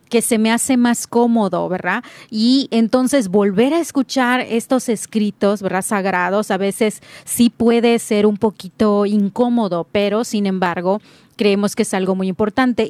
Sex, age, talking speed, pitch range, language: female, 30-49, 155 wpm, 200-240 Hz, Spanish